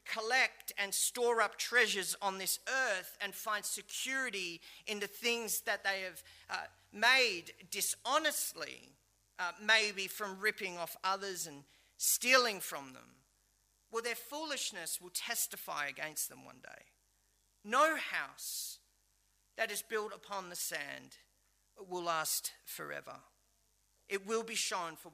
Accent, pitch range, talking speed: Australian, 195-255 Hz, 130 wpm